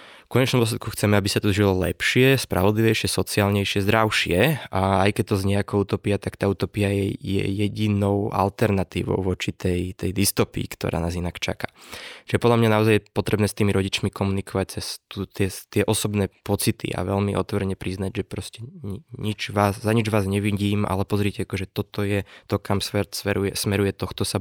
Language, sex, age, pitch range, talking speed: Slovak, male, 20-39, 95-110 Hz, 180 wpm